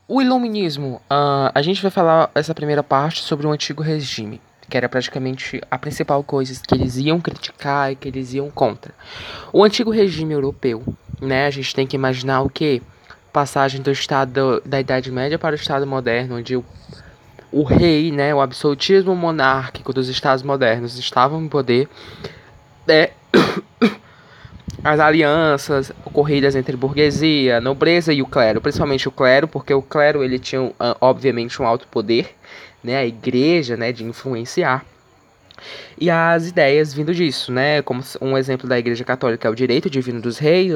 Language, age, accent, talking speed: English, 20-39, Brazilian, 165 wpm